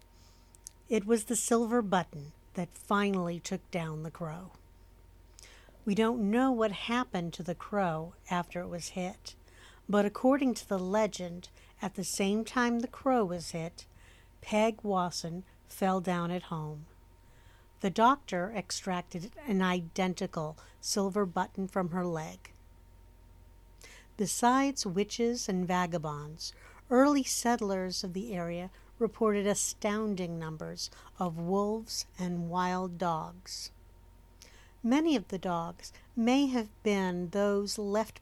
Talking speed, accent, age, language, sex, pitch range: 120 wpm, American, 50-69, English, female, 155-210 Hz